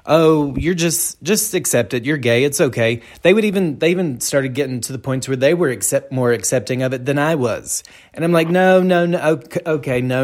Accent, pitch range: American, 110-140 Hz